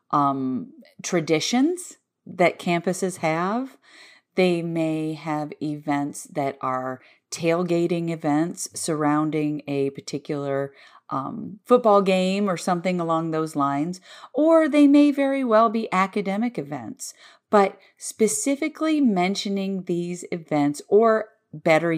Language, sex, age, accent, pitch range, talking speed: English, female, 40-59, American, 145-195 Hz, 105 wpm